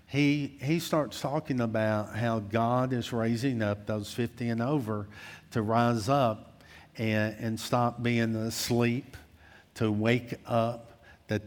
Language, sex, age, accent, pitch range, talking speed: English, male, 50-69, American, 105-125 Hz, 135 wpm